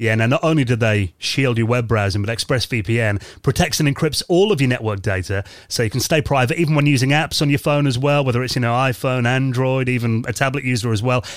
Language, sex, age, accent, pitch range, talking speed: English, male, 30-49, British, 110-145 Hz, 245 wpm